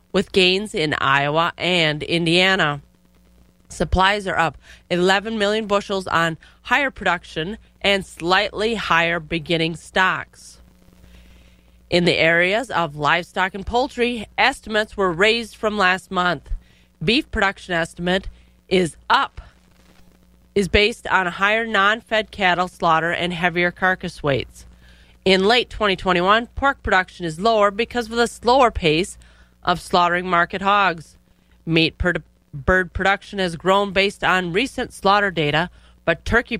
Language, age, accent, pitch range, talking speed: English, 30-49, American, 155-210 Hz, 130 wpm